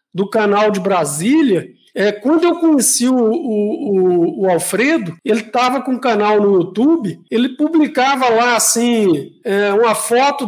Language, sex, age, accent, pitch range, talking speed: Portuguese, male, 50-69, Brazilian, 210-300 Hz, 160 wpm